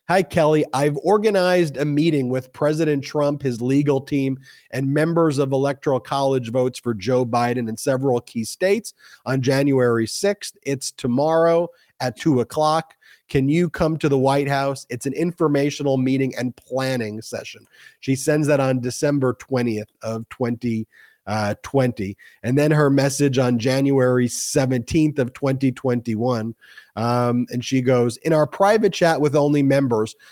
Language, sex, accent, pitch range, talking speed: English, male, American, 125-155 Hz, 150 wpm